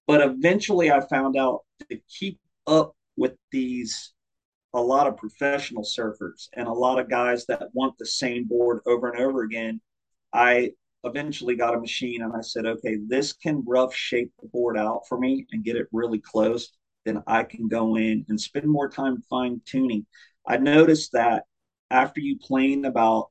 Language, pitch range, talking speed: English, 120-140 Hz, 180 wpm